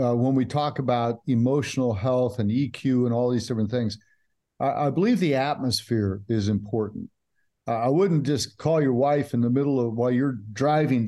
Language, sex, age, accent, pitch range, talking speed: English, male, 50-69, American, 115-145 Hz, 190 wpm